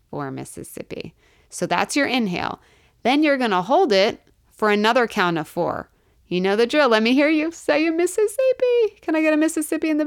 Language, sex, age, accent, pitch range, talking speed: English, female, 30-49, American, 180-260 Hz, 205 wpm